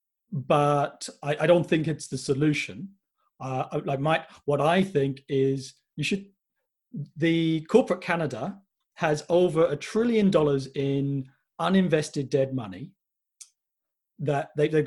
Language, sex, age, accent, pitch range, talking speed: English, male, 40-59, British, 135-180 Hz, 135 wpm